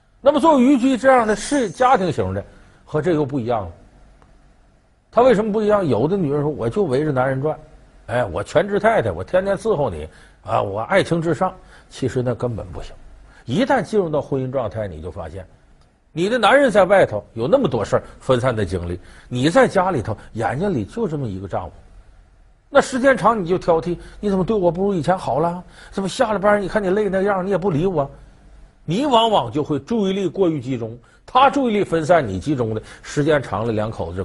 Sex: male